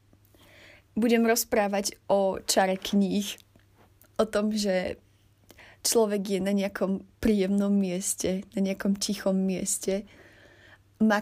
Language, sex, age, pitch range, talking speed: Slovak, female, 20-39, 185-220 Hz, 100 wpm